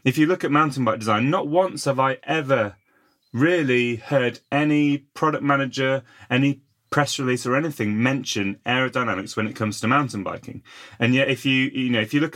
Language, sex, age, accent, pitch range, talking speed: English, male, 30-49, British, 105-130 Hz, 190 wpm